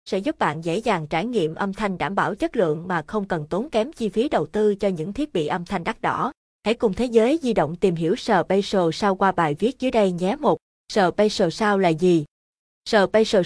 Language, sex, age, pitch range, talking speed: Vietnamese, female, 20-39, 180-220 Hz, 230 wpm